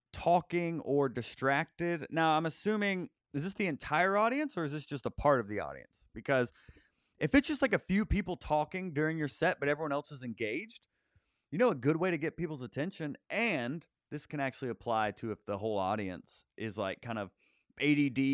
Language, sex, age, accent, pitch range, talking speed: English, male, 30-49, American, 115-170 Hz, 200 wpm